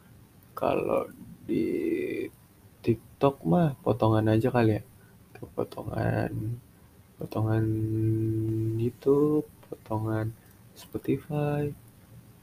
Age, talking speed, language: 20-39, 65 wpm, Indonesian